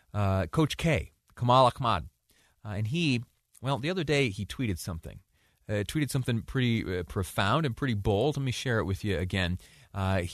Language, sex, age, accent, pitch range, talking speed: English, male, 30-49, American, 95-120 Hz, 185 wpm